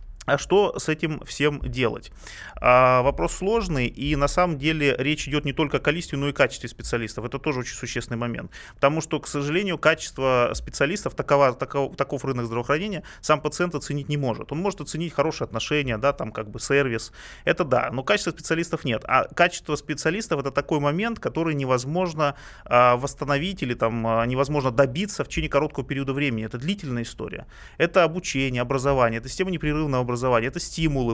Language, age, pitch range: Russian, 30-49, 125-160 Hz